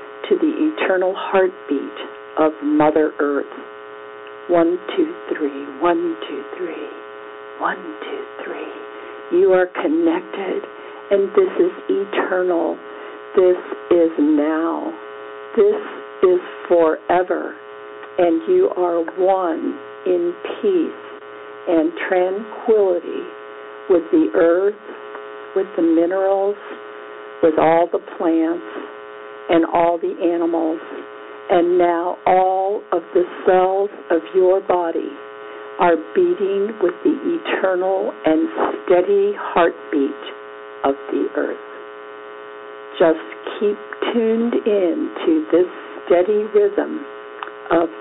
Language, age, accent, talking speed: English, 50-69, American, 100 wpm